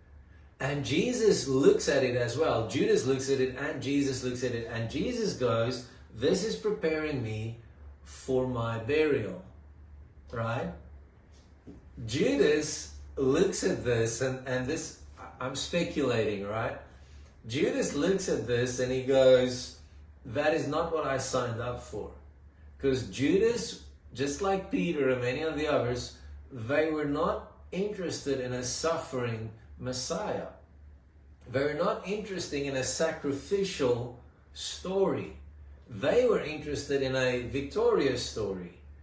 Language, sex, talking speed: English, male, 130 wpm